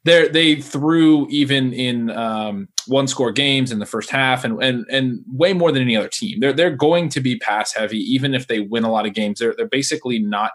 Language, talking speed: English, 235 wpm